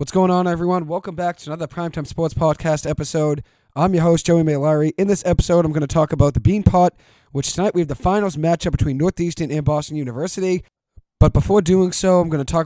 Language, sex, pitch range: English, male, 140-175 Hz